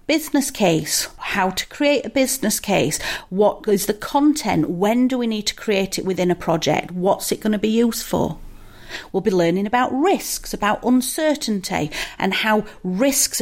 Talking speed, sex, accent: 175 wpm, female, British